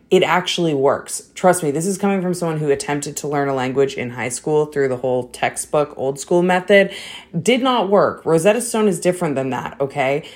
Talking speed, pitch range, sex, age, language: 210 wpm, 140-180 Hz, female, 20-39, English